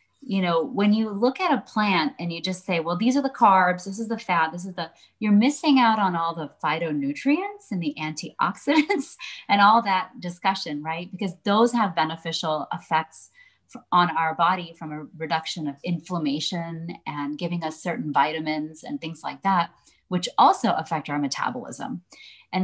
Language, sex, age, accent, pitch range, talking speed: English, female, 30-49, American, 160-200 Hz, 180 wpm